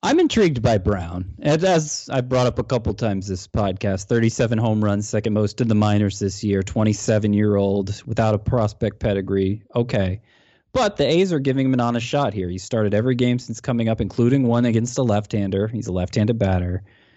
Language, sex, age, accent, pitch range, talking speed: English, male, 20-39, American, 100-125 Hz, 195 wpm